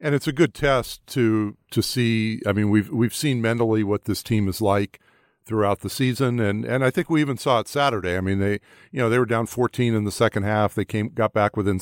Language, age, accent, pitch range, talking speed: English, 50-69, American, 100-120 Hz, 250 wpm